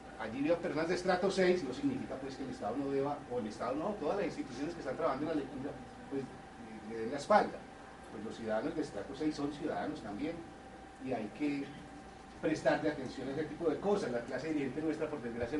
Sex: male